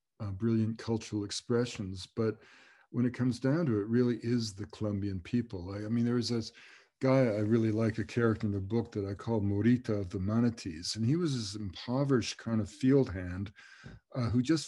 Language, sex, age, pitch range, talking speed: English, male, 50-69, 100-120 Hz, 200 wpm